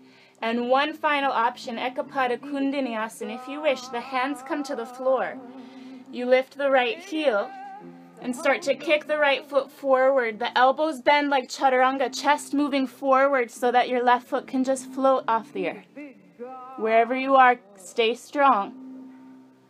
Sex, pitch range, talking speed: female, 230-285 Hz, 160 wpm